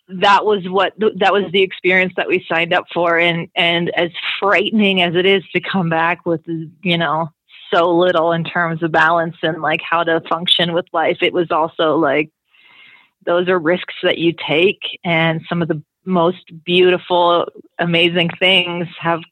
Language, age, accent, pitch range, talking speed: English, 30-49, American, 170-190 Hz, 175 wpm